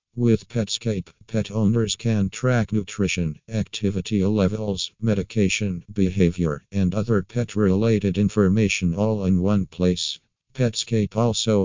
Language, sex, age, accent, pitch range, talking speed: English, male, 50-69, American, 95-110 Hz, 110 wpm